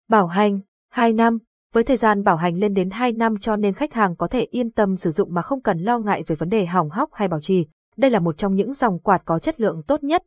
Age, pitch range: 20-39, 185-230 Hz